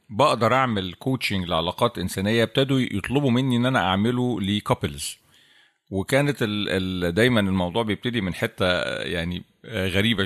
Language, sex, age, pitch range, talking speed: Arabic, male, 40-59, 90-120 Hz, 130 wpm